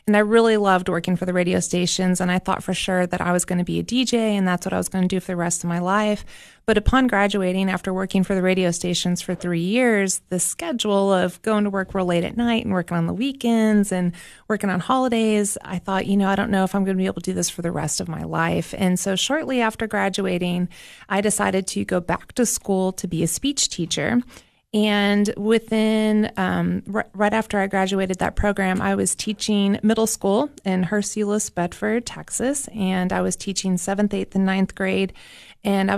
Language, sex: English, female